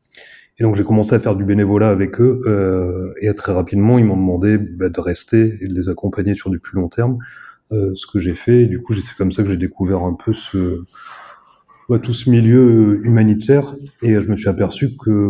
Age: 30-49